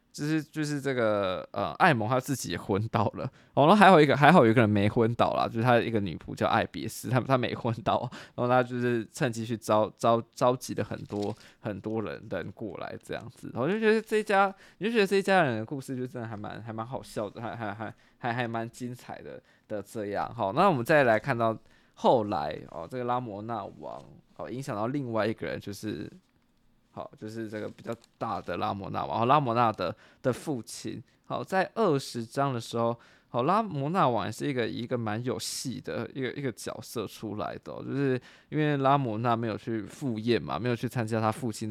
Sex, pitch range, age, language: male, 110-130 Hz, 20-39, Chinese